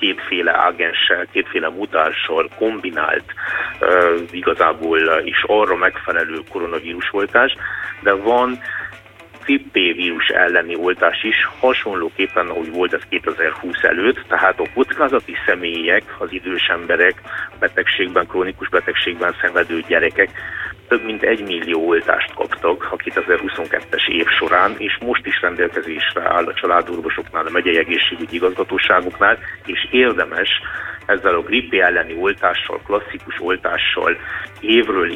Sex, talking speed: male, 115 wpm